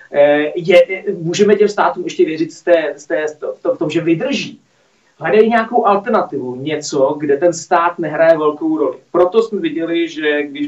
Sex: male